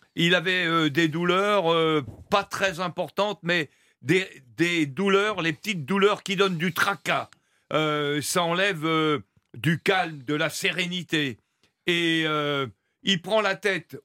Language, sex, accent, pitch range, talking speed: French, male, French, 160-195 Hz, 150 wpm